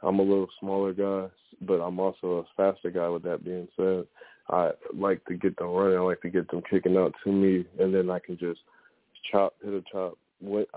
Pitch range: 90-95 Hz